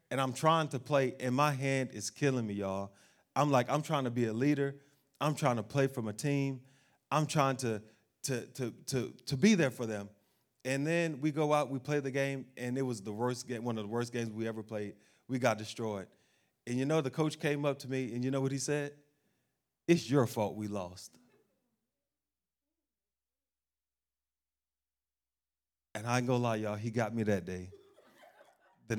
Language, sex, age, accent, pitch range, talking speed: English, male, 30-49, American, 120-160 Hz, 200 wpm